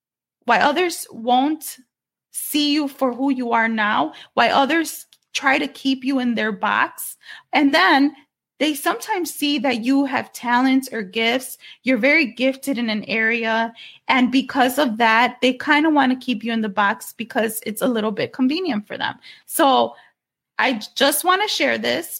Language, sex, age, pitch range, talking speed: English, female, 20-39, 230-285 Hz, 175 wpm